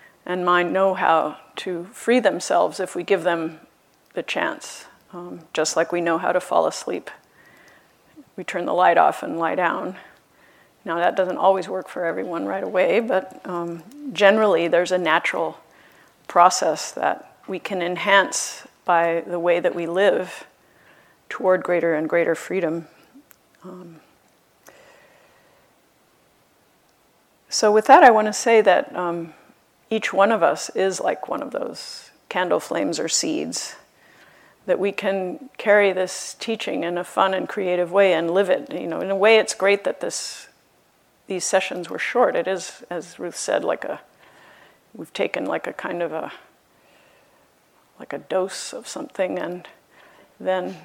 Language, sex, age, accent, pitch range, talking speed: English, female, 40-59, American, 175-210 Hz, 155 wpm